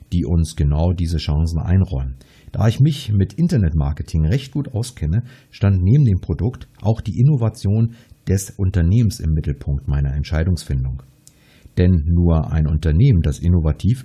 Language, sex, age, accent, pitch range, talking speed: German, male, 50-69, German, 80-115 Hz, 140 wpm